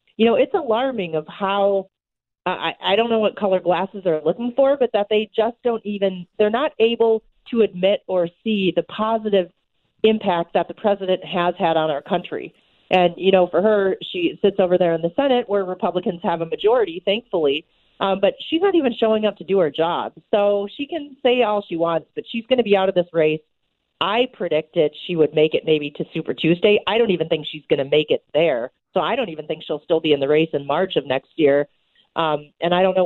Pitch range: 160-210 Hz